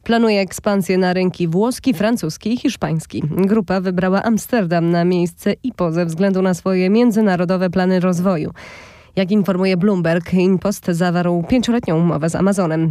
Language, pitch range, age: Polish, 180-220 Hz, 20-39